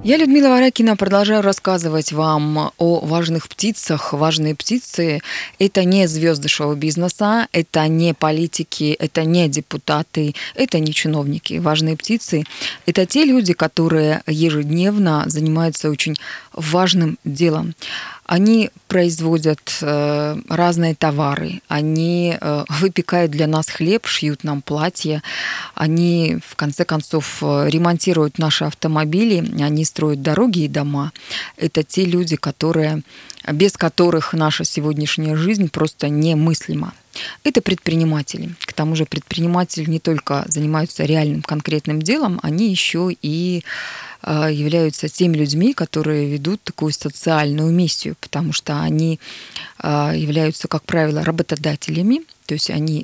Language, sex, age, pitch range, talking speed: Russian, female, 20-39, 150-180 Hz, 120 wpm